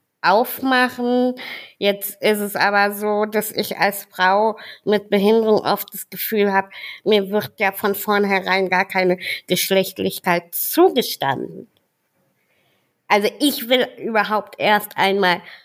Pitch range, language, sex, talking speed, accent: 180-230 Hz, German, female, 120 wpm, German